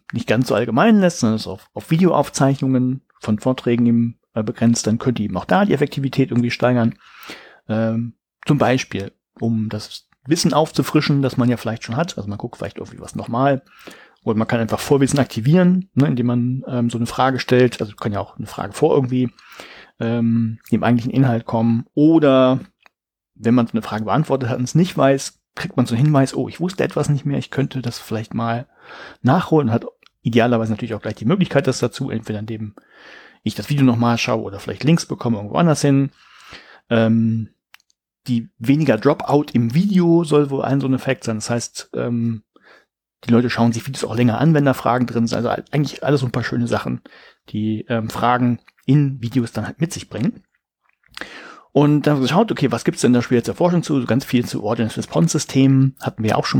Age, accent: 40-59, German